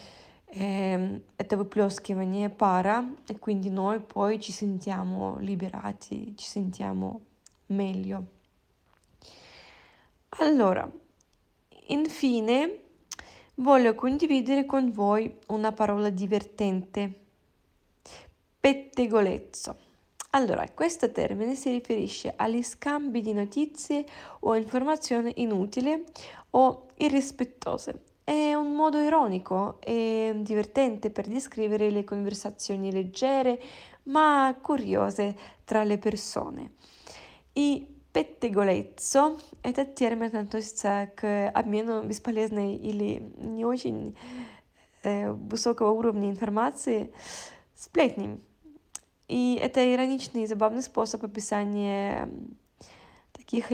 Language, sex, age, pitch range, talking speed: Italian, female, 20-39, 205-265 Hz, 90 wpm